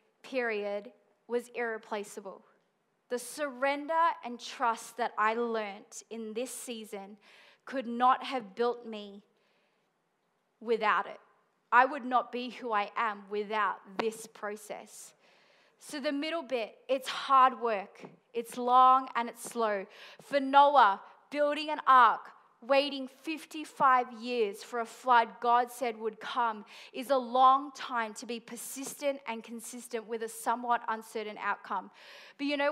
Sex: female